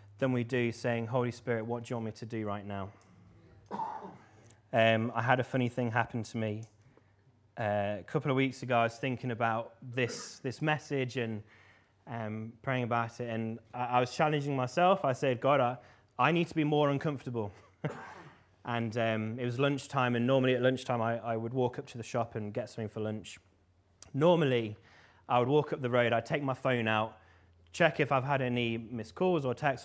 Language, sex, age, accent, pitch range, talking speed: English, male, 20-39, British, 110-135 Hz, 205 wpm